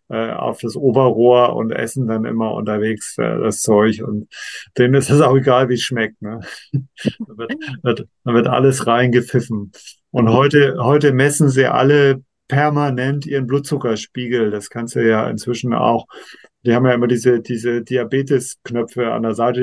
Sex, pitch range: male, 120-145 Hz